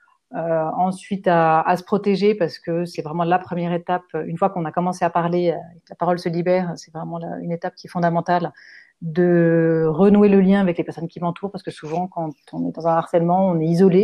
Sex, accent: female, French